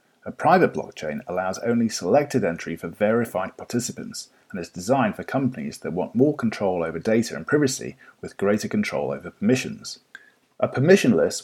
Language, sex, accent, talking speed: English, male, British, 155 wpm